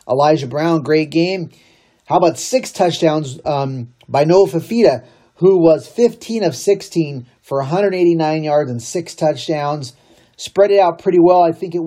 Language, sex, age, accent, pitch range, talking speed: English, male, 30-49, American, 130-170 Hz, 155 wpm